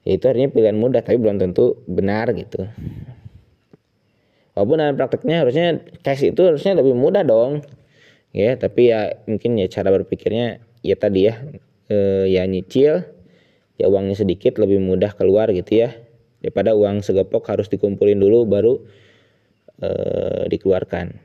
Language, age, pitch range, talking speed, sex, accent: Indonesian, 20-39, 100-135 Hz, 140 wpm, male, native